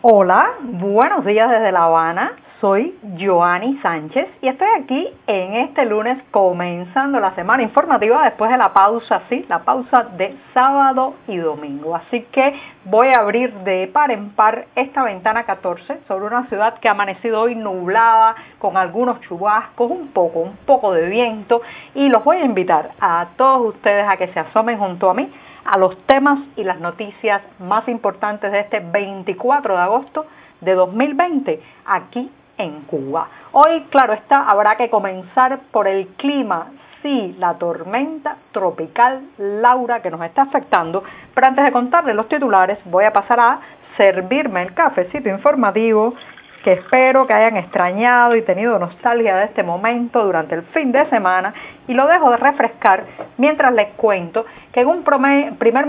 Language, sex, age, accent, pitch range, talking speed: Spanish, female, 40-59, American, 195-260 Hz, 165 wpm